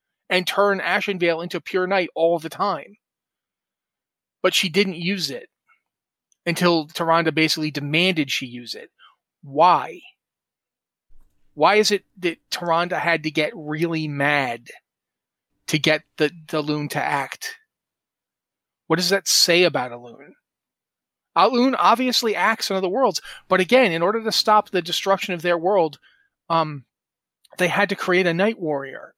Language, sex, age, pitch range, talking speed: English, male, 30-49, 165-205 Hz, 150 wpm